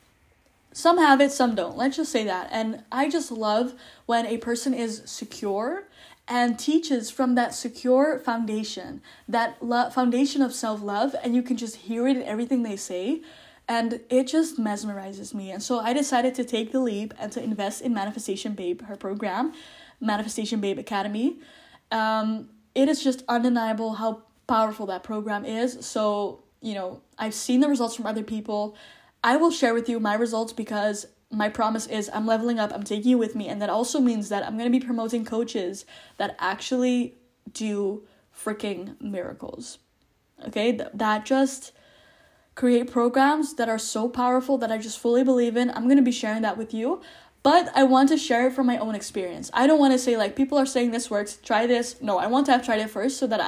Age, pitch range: 10-29, 215-260 Hz